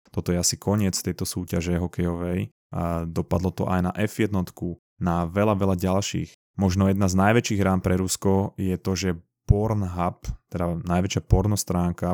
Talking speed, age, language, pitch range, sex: 155 wpm, 20-39, Slovak, 90-100 Hz, male